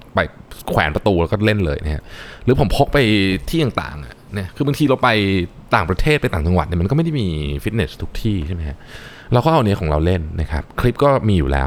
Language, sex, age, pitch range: Thai, male, 20-39, 80-120 Hz